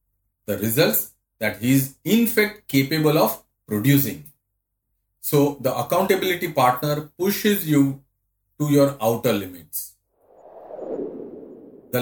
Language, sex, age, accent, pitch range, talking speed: English, male, 40-59, Indian, 100-150 Hz, 105 wpm